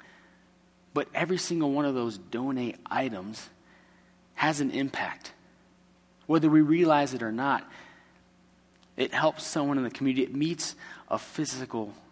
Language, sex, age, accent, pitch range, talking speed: English, male, 30-49, American, 130-160 Hz, 135 wpm